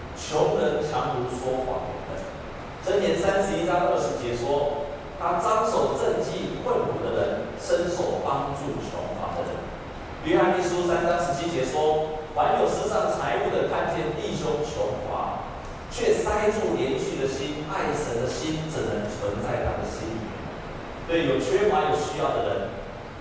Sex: male